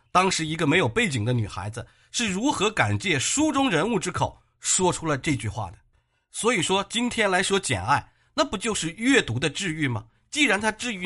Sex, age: male, 50-69